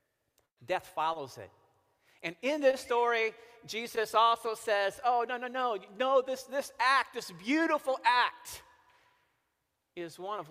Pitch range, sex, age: 150-230 Hz, male, 40-59